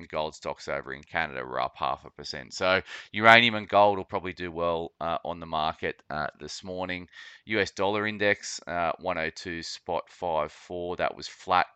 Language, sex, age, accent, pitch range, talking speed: English, male, 30-49, Australian, 80-100 Hz, 180 wpm